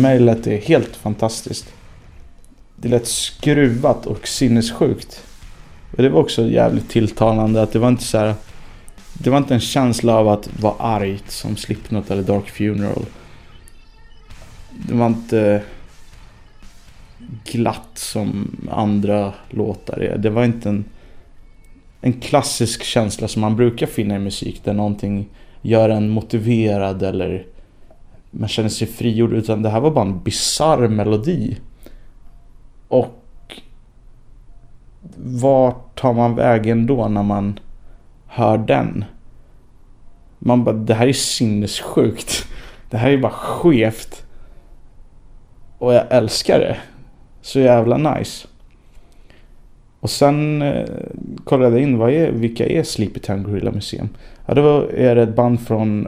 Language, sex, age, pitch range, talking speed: Swedish, male, 20-39, 105-125 Hz, 135 wpm